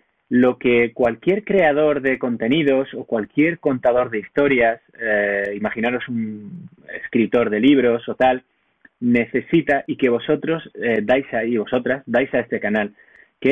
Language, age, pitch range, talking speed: Spanish, 20-39, 115-155 Hz, 145 wpm